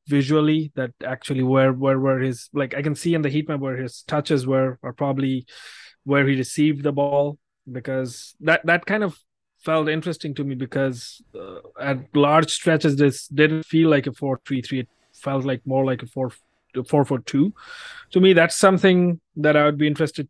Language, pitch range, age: English, 130-160 Hz, 30-49